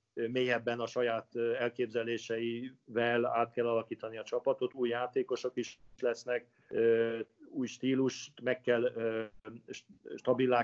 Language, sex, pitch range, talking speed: Hungarian, male, 115-130 Hz, 100 wpm